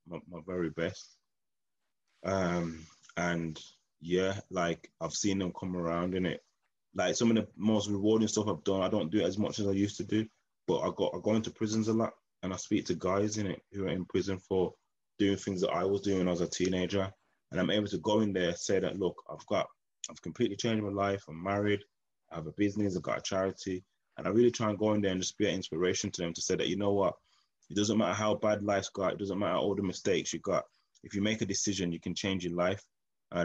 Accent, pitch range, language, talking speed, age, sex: British, 90-105 Hz, English, 250 wpm, 20-39, male